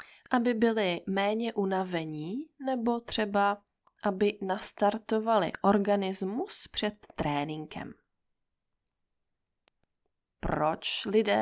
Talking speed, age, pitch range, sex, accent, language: 70 wpm, 20-39, 180-285 Hz, female, native, Czech